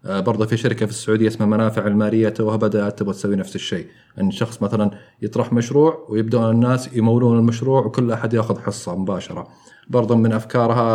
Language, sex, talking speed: Arabic, male, 175 wpm